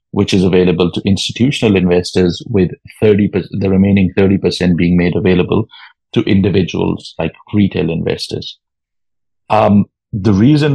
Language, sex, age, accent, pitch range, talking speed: English, male, 50-69, Indian, 95-105 Hz, 125 wpm